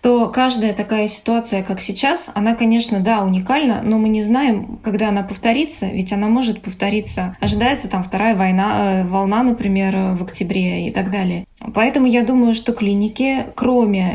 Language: Russian